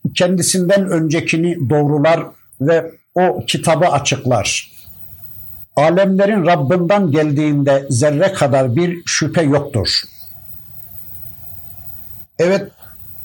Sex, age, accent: male, 60-79, native